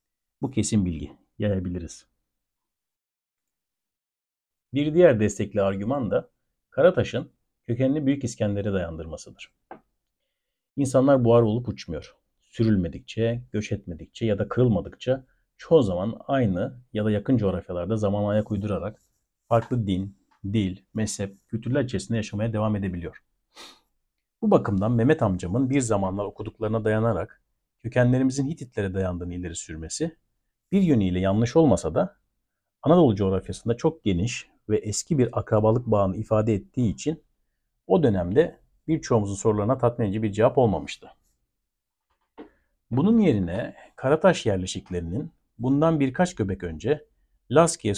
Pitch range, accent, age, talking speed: 95-125 Hz, native, 60-79, 115 wpm